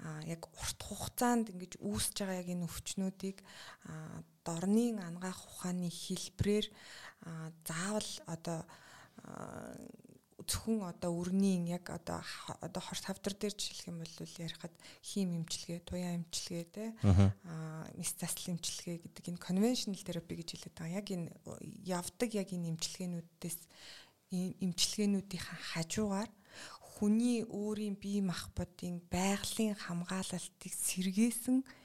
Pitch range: 170-200 Hz